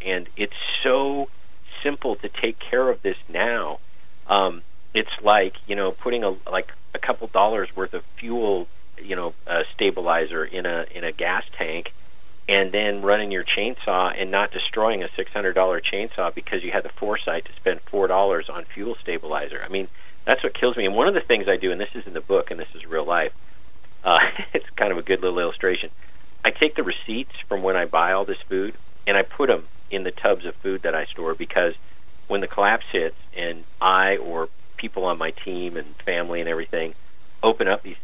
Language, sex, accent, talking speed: English, male, American, 200 wpm